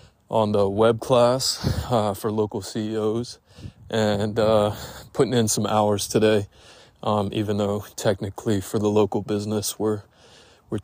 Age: 20-39